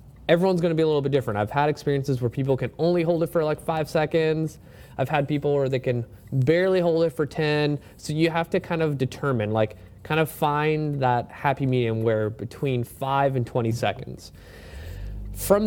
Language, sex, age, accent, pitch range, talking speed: English, male, 20-39, American, 120-150 Hz, 200 wpm